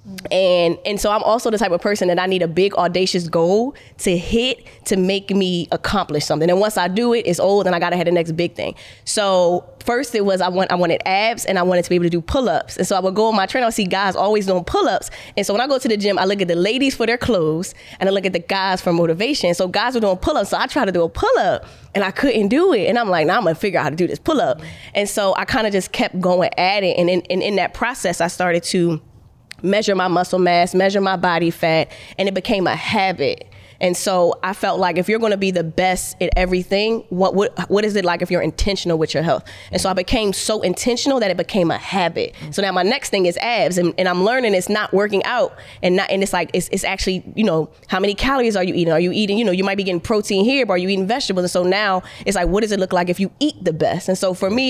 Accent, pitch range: American, 180-210 Hz